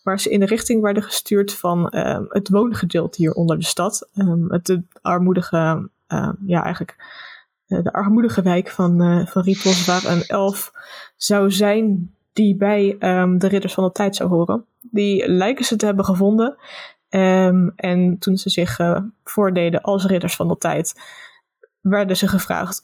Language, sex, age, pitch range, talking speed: Dutch, female, 20-39, 180-205 Hz, 170 wpm